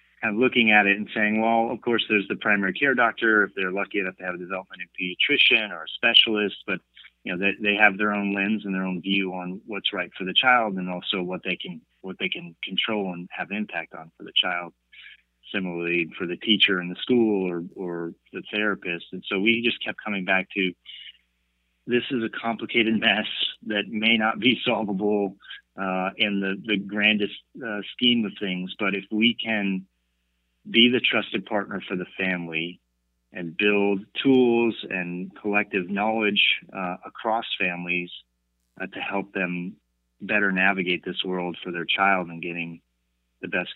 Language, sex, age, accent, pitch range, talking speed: English, male, 30-49, American, 90-105 Hz, 185 wpm